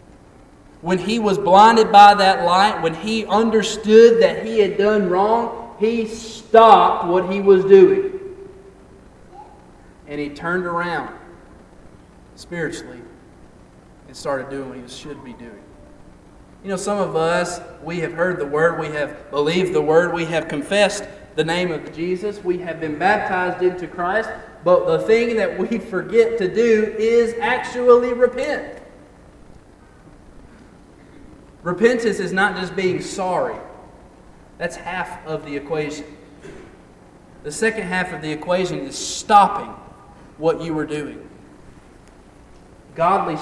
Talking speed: 135 wpm